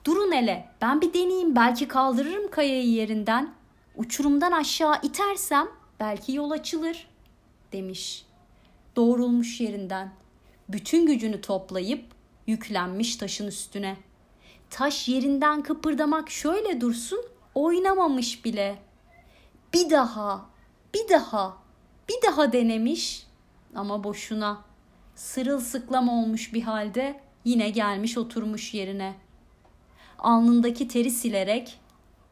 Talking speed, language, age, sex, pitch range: 95 wpm, Turkish, 30-49, female, 205-285 Hz